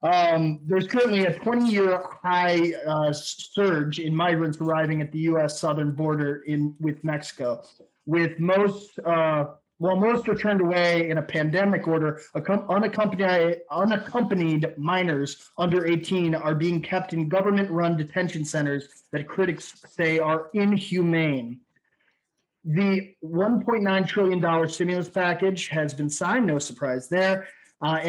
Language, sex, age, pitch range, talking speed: English, male, 30-49, 155-190 Hz, 130 wpm